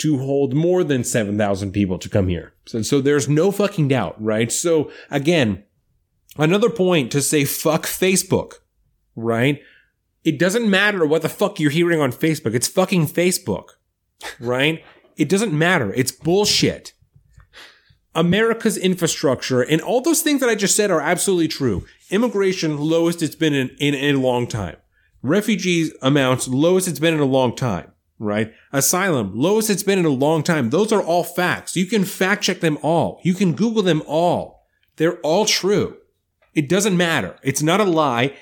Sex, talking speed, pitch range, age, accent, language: male, 170 wpm, 140-185 Hz, 30-49, American, English